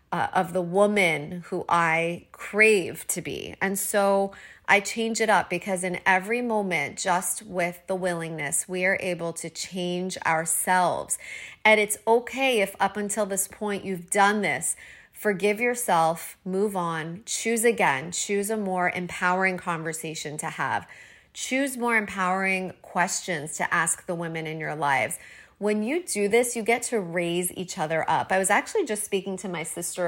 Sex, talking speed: female, 165 wpm